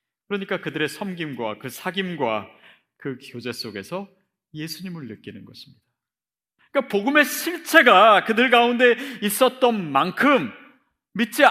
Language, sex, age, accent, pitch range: Korean, male, 40-59, native, 130-195 Hz